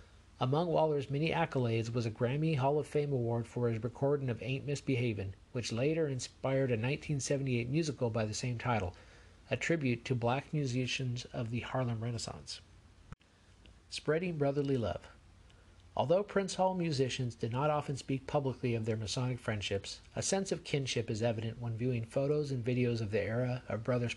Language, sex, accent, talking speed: English, male, American, 170 wpm